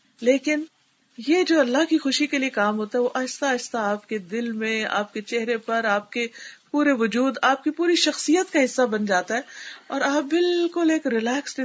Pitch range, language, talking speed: 190-260 Hz, Urdu, 205 wpm